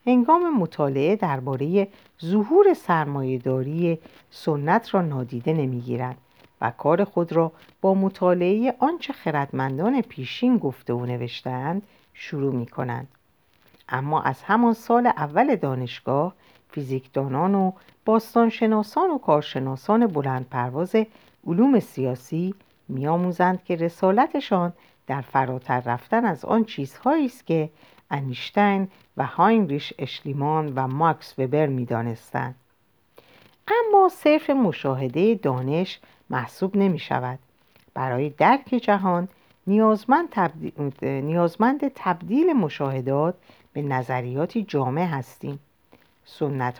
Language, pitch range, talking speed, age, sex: Persian, 130-210 Hz, 105 wpm, 50-69, female